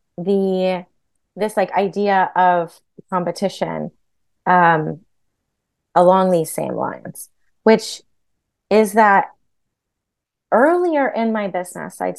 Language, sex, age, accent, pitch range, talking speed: English, female, 20-39, American, 195-260 Hz, 95 wpm